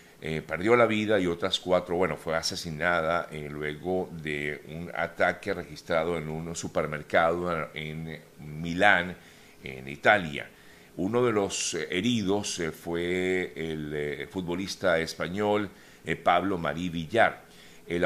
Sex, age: male, 50-69